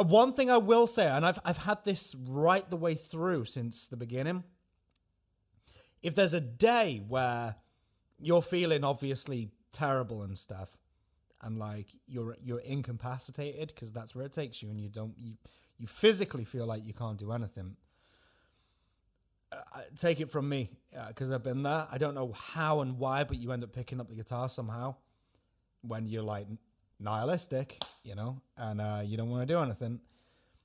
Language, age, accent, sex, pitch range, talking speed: English, 30-49, British, male, 105-145 Hz, 175 wpm